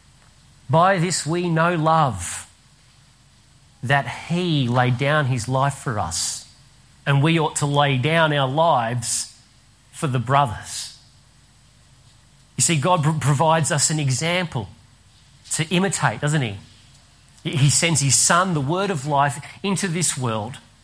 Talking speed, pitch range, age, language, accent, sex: 130 wpm, 125-160 Hz, 40-59, English, Australian, male